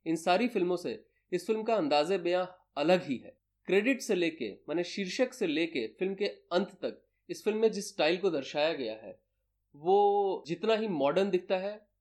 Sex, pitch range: male, 135-200 Hz